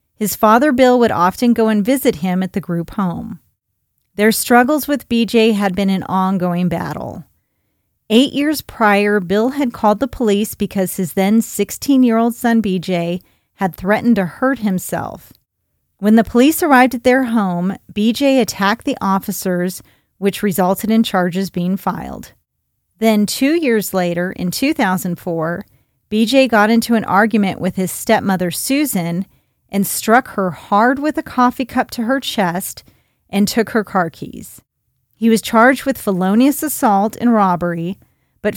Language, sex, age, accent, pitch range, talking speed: English, female, 40-59, American, 185-235 Hz, 150 wpm